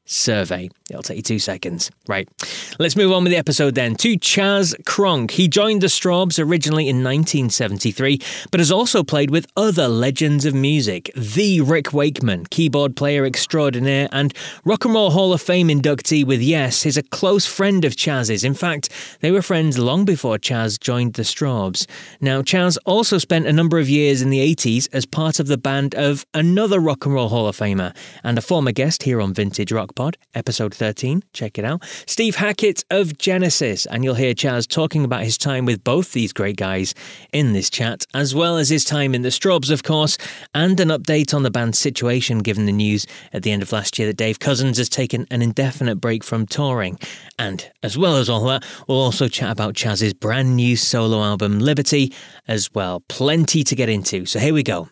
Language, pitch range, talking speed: English, 115-160 Hz, 205 wpm